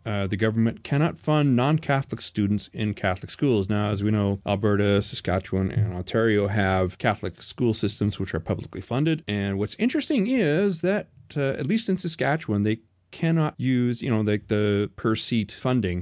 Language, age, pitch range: English, 30-49, 100-120 Hz